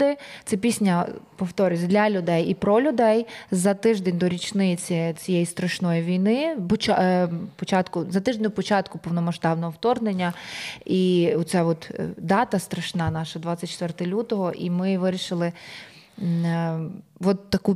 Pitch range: 175-210 Hz